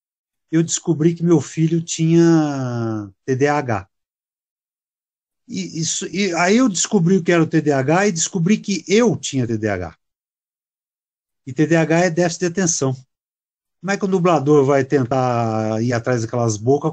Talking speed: 145 wpm